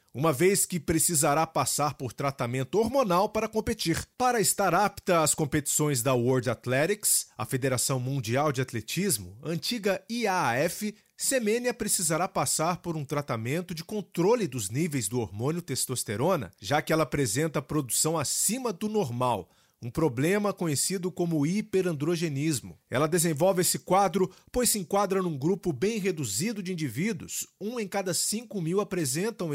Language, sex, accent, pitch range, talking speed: Portuguese, male, Brazilian, 135-195 Hz, 140 wpm